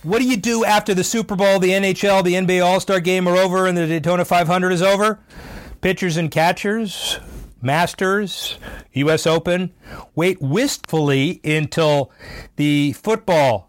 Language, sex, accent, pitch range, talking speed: English, male, American, 125-175 Hz, 145 wpm